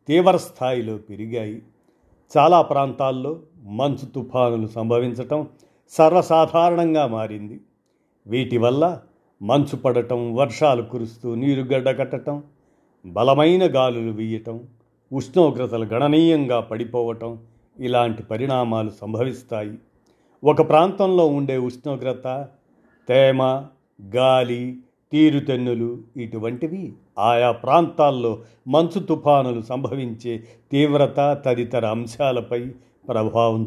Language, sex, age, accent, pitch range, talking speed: Telugu, male, 40-59, native, 115-145 Hz, 75 wpm